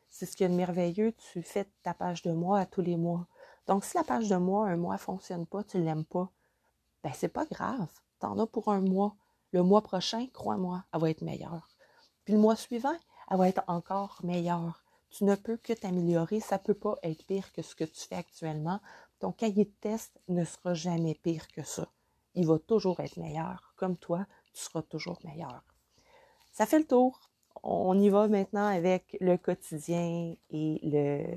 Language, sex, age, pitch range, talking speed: French, female, 30-49, 170-210 Hz, 210 wpm